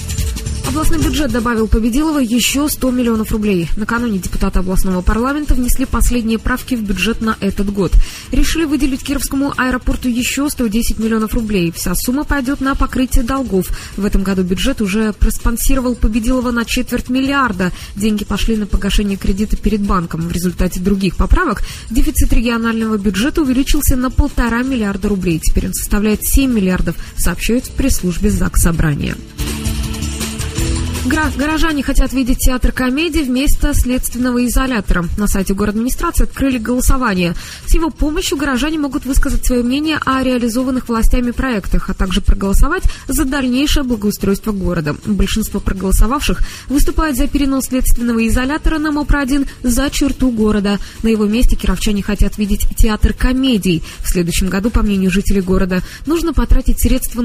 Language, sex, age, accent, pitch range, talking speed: Russian, female, 20-39, native, 200-265 Hz, 145 wpm